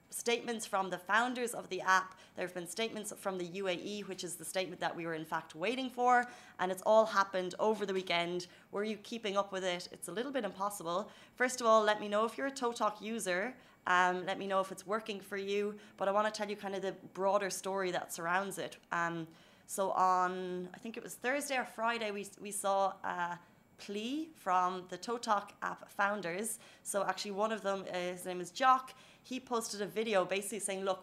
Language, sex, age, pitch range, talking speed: Arabic, female, 20-39, 180-215 Hz, 220 wpm